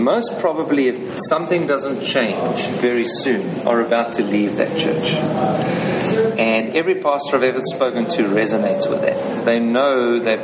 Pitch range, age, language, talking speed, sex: 110-145 Hz, 40-59, English, 155 wpm, male